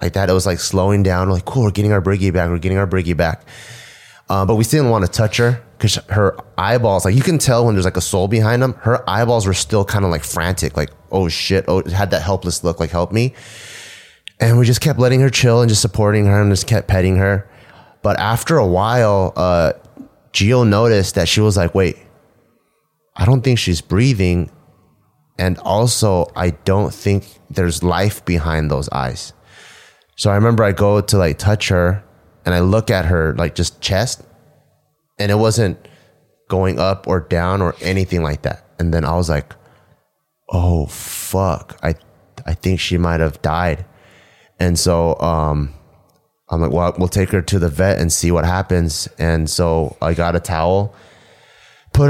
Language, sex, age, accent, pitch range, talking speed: English, male, 30-49, American, 85-110 Hz, 195 wpm